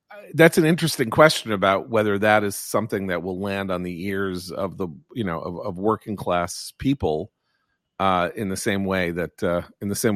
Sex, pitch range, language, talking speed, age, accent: male, 95-150 Hz, English, 200 wpm, 40-59, American